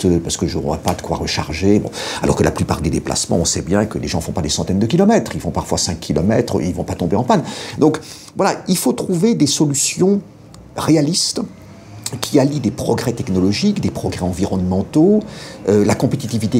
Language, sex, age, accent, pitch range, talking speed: French, male, 50-69, French, 90-130 Hz, 215 wpm